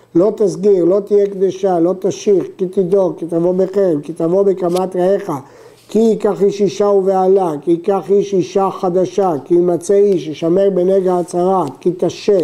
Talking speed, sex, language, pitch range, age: 165 wpm, male, Hebrew, 170-205 Hz, 50-69